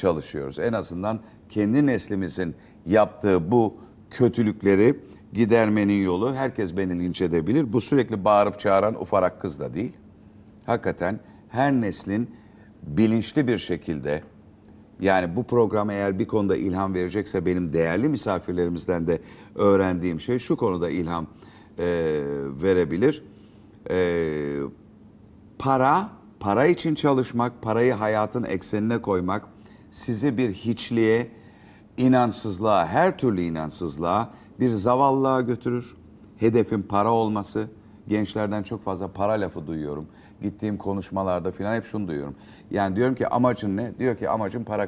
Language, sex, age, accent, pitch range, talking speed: Turkish, male, 50-69, native, 95-115 Hz, 120 wpm